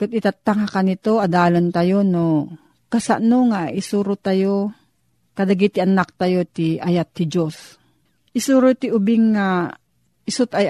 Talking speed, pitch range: 135 wpm, 175-220 Hz